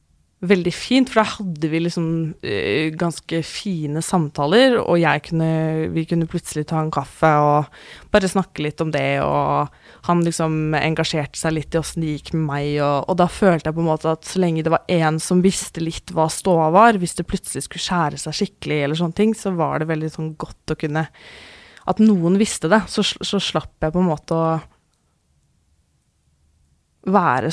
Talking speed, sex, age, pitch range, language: 170 wpm, female, 20-39, 150-180 Hz, English